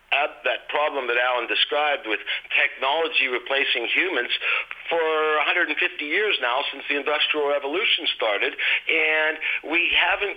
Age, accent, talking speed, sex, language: 50-69, American, 120 wpm, male, English